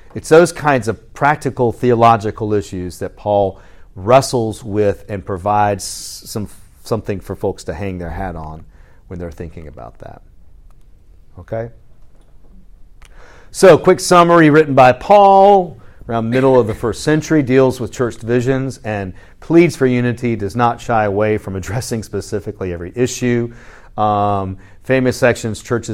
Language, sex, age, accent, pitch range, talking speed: English, male, 40-59, American, 90-115 Hz, 145 wpm